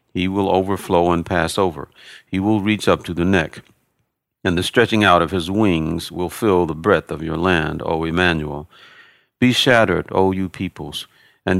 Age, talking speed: 50-69, 180 wpm